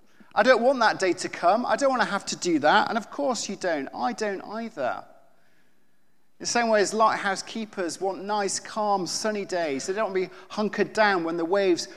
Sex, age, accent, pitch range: male, 40-59, British, 135-205 Hz